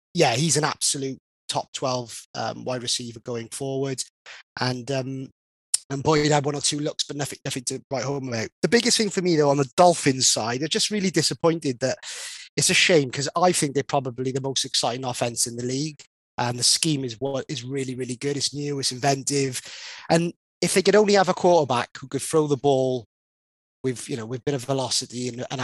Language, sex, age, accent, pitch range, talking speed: English, male, 30-49, British, 120-150 Hz, 220 wpm